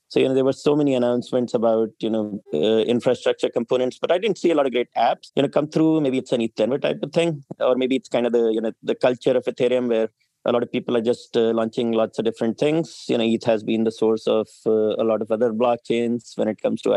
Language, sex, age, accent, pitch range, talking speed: English, male, 30-49, Indian, 110-130 Hz, 270 wpm